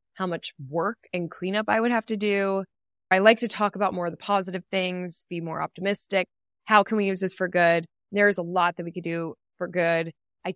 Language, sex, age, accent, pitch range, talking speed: English, female, 20-39, American, 170-210 Hz, 225 wpm